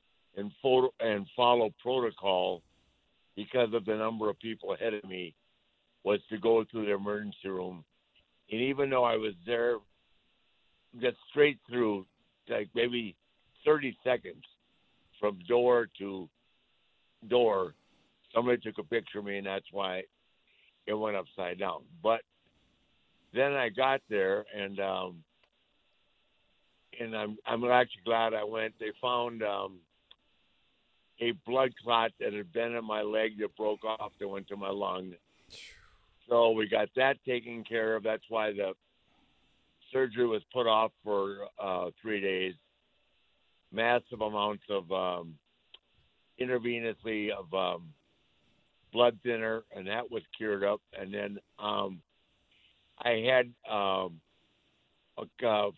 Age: 60-79